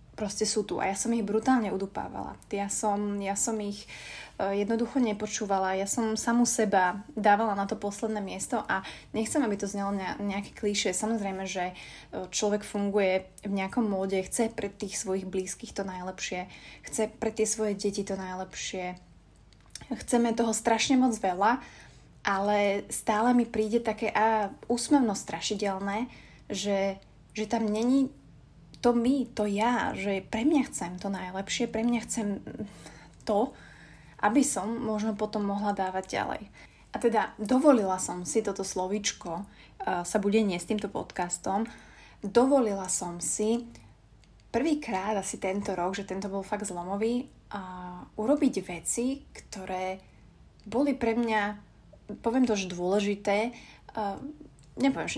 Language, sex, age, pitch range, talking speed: Slovak, female, 20-39, 190-225 Hz, 135 wpm